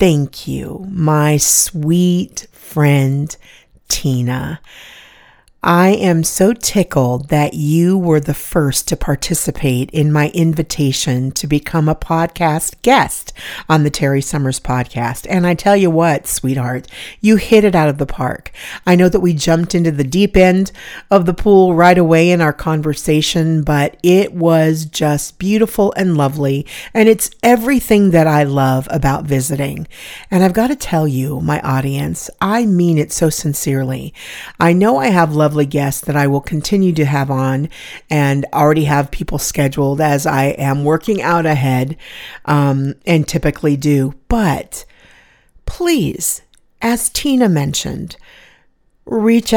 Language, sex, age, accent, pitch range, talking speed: English, female, 50-69, American, 145-180 Hz, 150 wpm